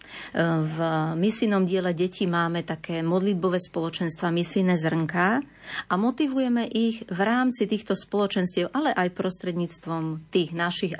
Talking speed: 120 wpm